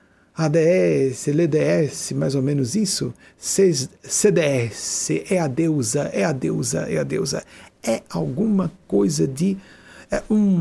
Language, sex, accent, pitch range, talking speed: Portuguese, male, Brazilian, 145-210 Hz, 120 wpm